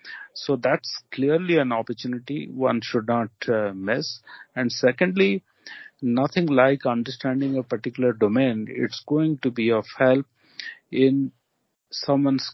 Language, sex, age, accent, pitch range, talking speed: English, male, 40-59, Indian, 120-140 Hz, 125 wpm